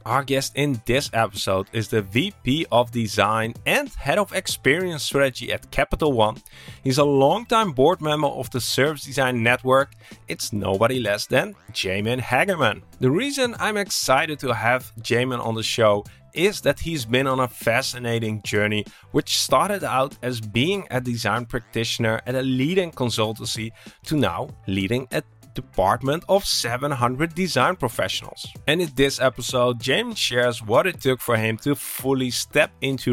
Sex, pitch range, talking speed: male, 110-140 Hz, 160 wpm